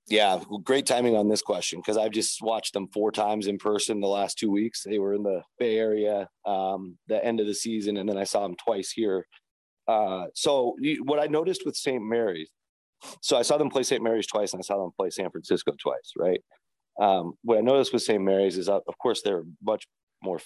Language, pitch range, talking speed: English, 95-110 Hz, 230 wpm